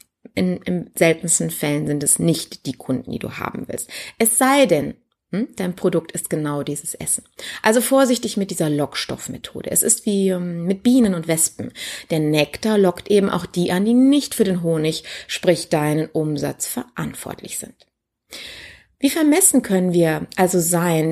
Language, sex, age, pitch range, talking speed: German, female, 30-49, 160-225 Hz, 160 wpm